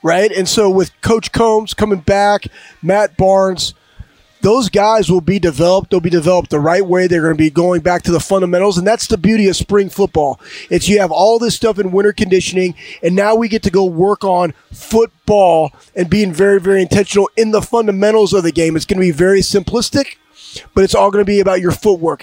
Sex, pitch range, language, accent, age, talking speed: male, 175-205 Hz, English, American, 20-39, 220 wpm